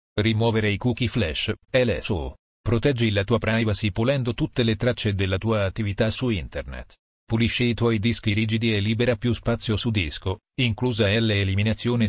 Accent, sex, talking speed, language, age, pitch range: native, male, 155 wpm, Italian, 40-59, 105-120 Hz